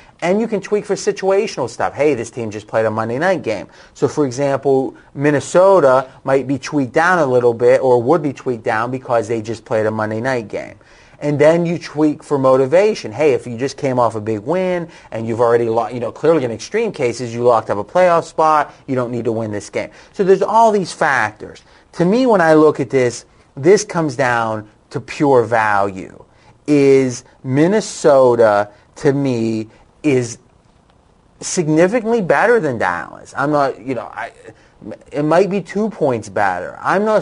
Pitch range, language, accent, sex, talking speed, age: 120-170 Hz, English, American, male, 190 wpm, 30-49